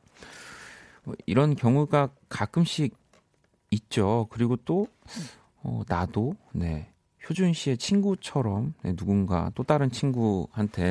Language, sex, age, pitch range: Korean, male, 40-59, 90-130 Hz